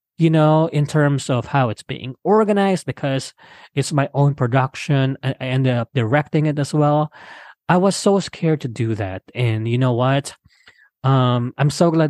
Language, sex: English, male